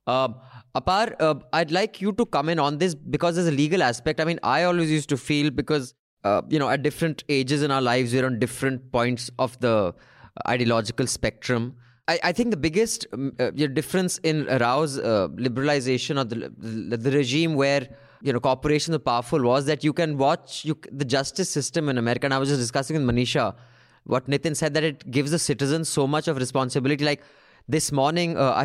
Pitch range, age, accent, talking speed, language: 125-155 Hz, 20-39, Indian, 205 wpm, English